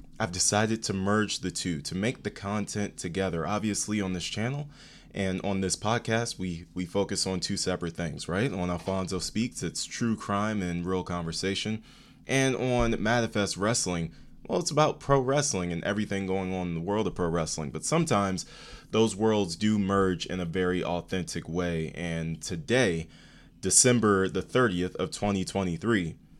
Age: 20-39